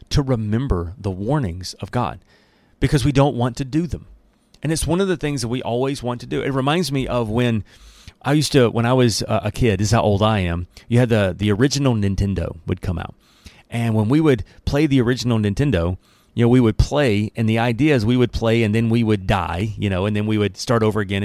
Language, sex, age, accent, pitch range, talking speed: English, male, 30-49, American, 105-140 Hz, 245 wpm